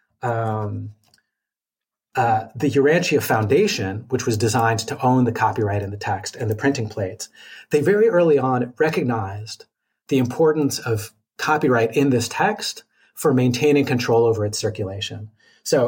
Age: 30-49